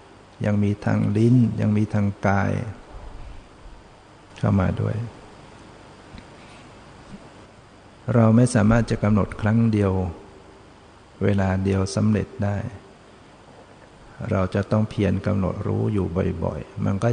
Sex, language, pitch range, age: male, Thai, 100-115 Hz, 60-79